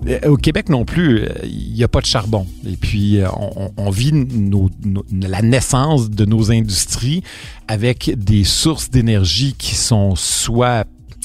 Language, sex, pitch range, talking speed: French, male, 100-135 Hz, 145 wpm